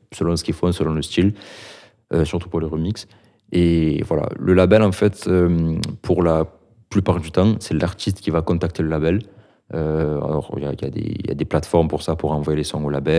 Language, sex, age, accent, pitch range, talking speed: French, male, 30-49, French, 75-90 Hz, 225 wpm